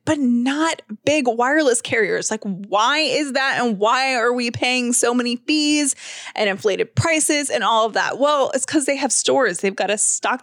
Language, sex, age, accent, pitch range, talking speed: English, female, 20-39, American, 215-280 Hz, 195 wpm